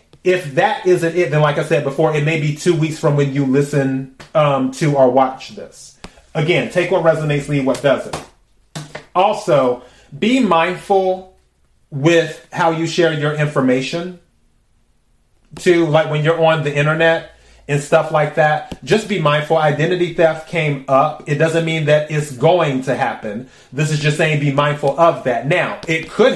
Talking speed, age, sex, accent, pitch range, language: 175 wpm, 30-49, male, American, 135-165 Hz, English